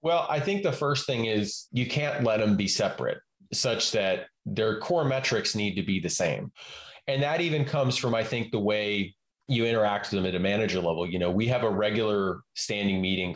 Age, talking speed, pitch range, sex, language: 30-49, 215 wpm, 100-140 Hz, male, English